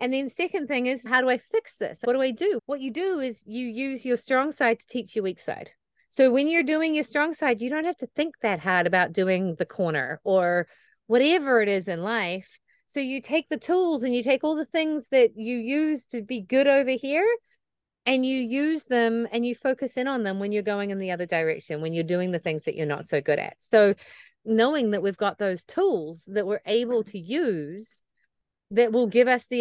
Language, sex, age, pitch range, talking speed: English, female, 30-49, 200-260 Hz, 235 wpm